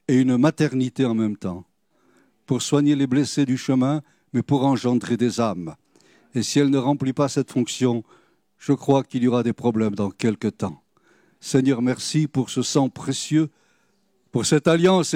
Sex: male